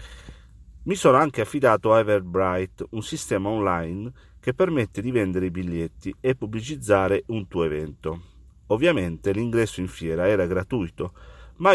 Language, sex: Italian, male